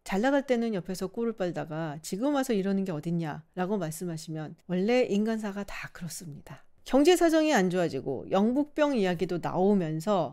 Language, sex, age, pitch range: Korean, female, 40-59, 175-255 Hz